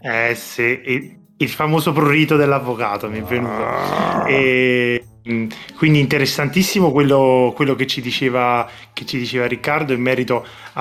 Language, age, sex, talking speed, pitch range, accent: Italian, 20-39, male, 105 wpm, 120-140 Hz, native